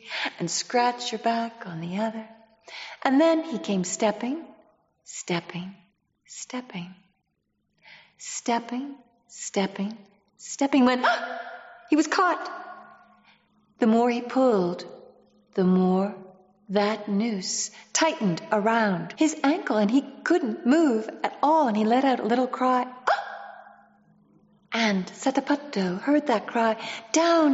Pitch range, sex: 195-270 Hz, female